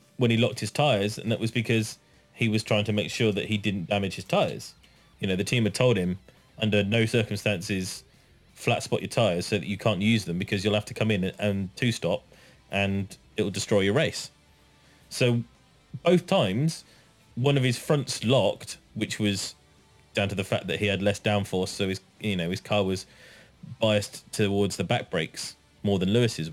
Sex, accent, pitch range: male, British, 100-125 Hz